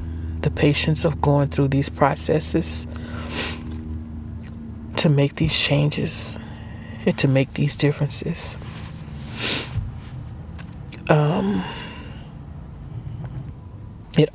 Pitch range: 90-145 Hz